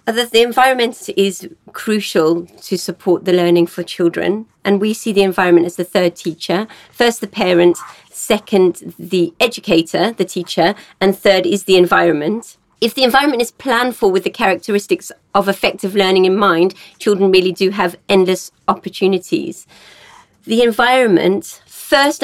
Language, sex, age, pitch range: Thai, female, 40-59, 185-230 Hz